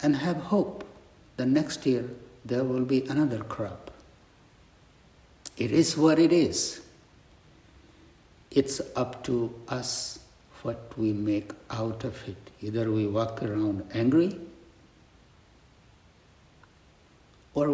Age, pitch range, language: 60-79, 110-140 Hz, English